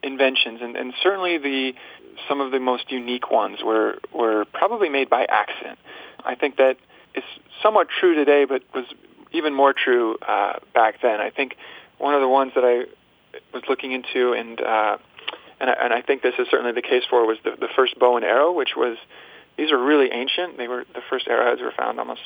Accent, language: American, English